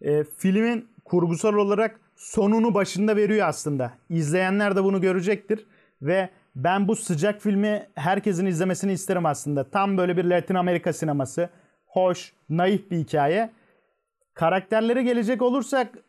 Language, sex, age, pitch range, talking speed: Turkish, male, 30-49, 170-215 Hz, 125 wpm